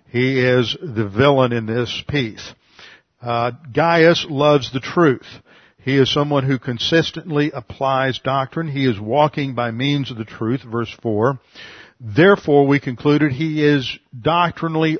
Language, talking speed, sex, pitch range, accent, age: English, 140 wpm, male, 125-155 Hz, American, 50-69